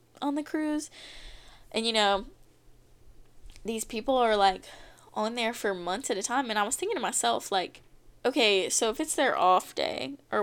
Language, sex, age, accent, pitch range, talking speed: English, female, 10-29, American, 200-280 Hz, 185 wpm